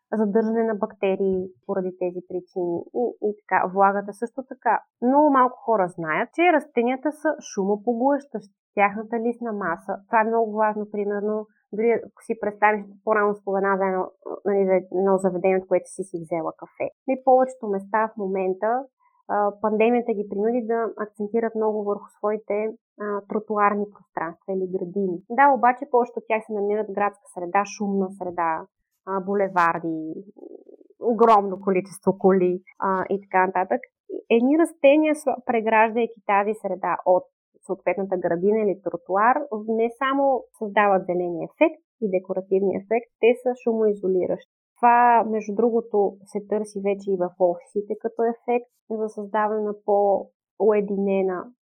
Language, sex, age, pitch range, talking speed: Bulgarian, female, 20-39, 190-230 Hz, 140 wpm